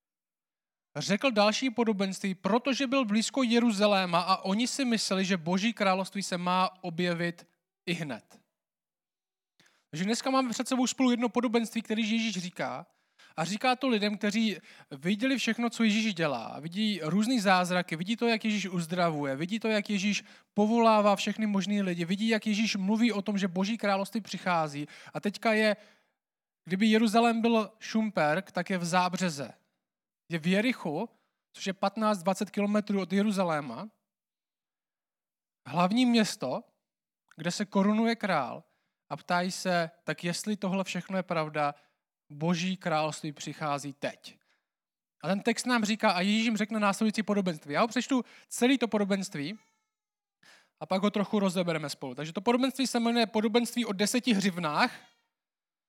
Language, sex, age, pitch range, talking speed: Czech, male, 20-39, 180-225 Hz, 145 wpm